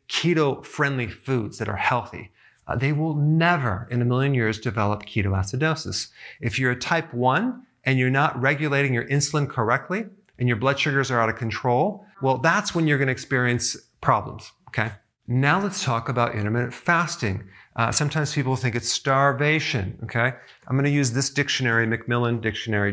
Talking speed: 170 wpm